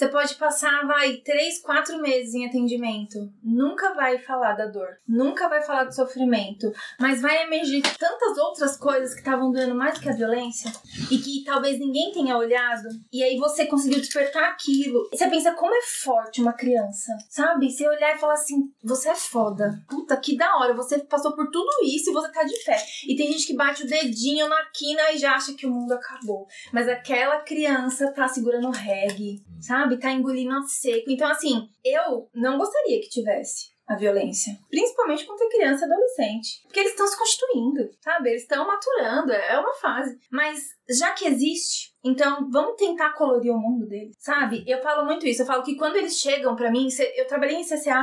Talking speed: 195 wpm